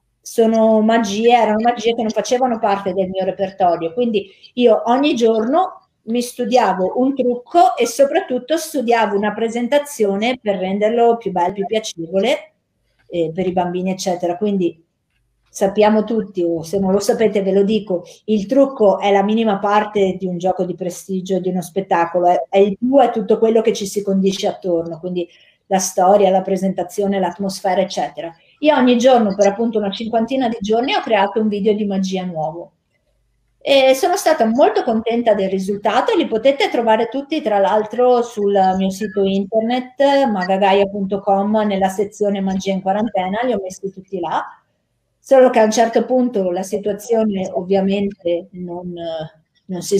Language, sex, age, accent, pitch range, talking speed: Italian, female, 50-69, native, 190-230 Hz, 160 wpm